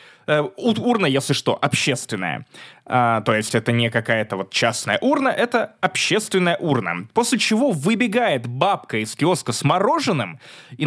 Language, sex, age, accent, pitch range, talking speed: Russian, male, 20-39, native, 145-235 Hz, 135 wpm